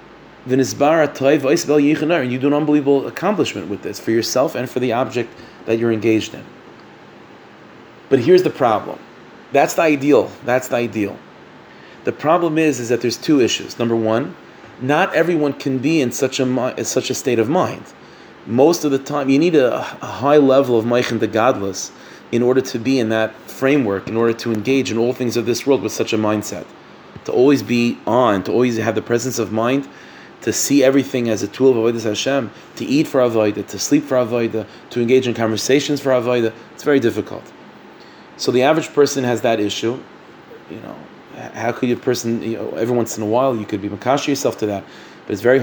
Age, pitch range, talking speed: 30-49, 115-140 Hz, 200 wpm